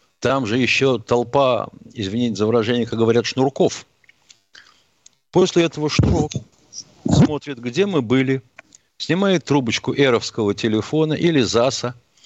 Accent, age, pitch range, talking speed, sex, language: native, 50-69, 110-155 Hz, 115 wpm, male, Russian